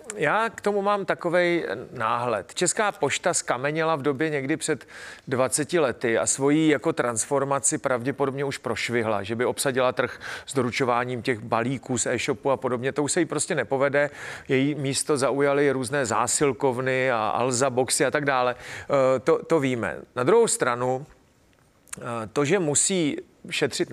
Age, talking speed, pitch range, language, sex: 40-59, 155 wpm, 130-160 Hz, Czech, male